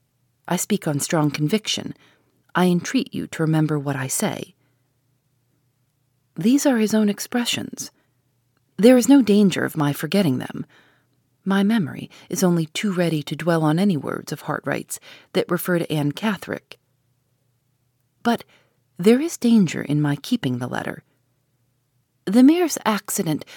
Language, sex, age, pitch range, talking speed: English, female, 40-59, 130-185 Hz, 145 wpm